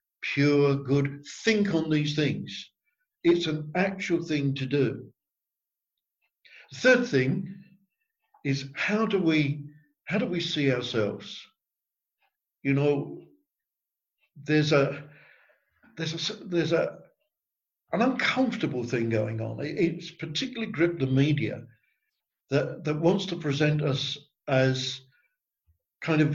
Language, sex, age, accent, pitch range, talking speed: English, male, 60-79, British, 140-170 Hz, 115 wpm